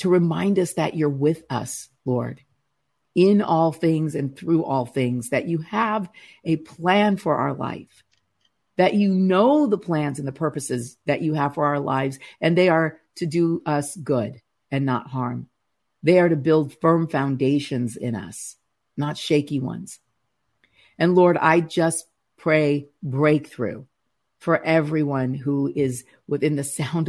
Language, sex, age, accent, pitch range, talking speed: English, female, 50-69, American, 135-160 Hz, 155 wpm